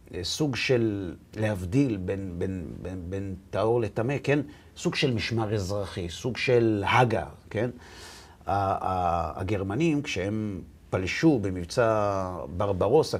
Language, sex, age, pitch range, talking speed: Hebrew, male, 50-69, 95-130 Hz, 90 wpm